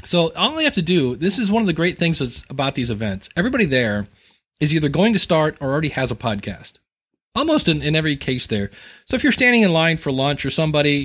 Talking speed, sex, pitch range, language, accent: 240 wpm, male, 130-170 Hz, English, American